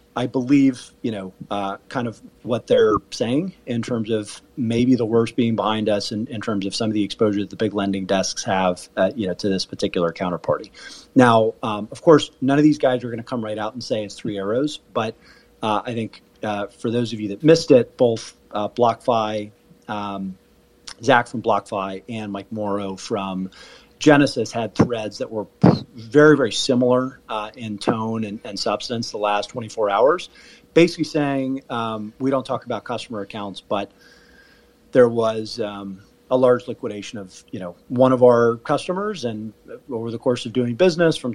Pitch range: 100-125 Hz